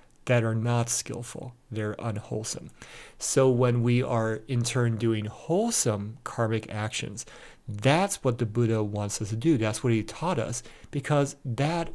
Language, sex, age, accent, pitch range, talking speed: English, male, 40-59, American, 115-140 Hz, 155 wpm